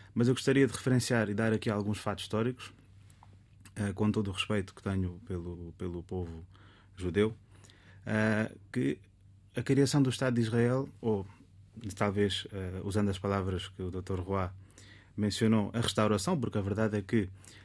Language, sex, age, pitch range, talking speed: Portuguese, male, 20-39, 100-120 Hz, 155 wpm